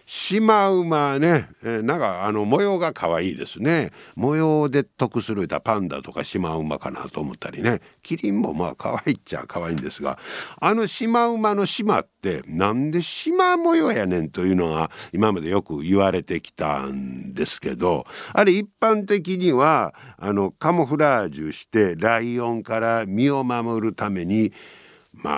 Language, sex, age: Japanese, male, 60-79